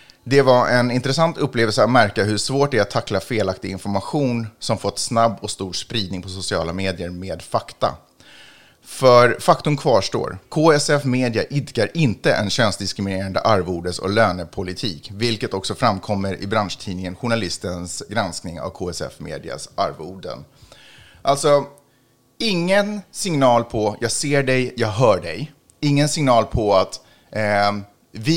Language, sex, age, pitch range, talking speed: Swedish, male, 30-49, 100-145 Hz, 140 wpm